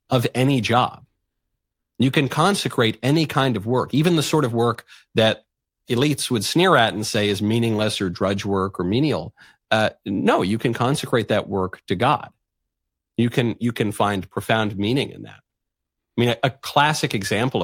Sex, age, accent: male, 40-59, American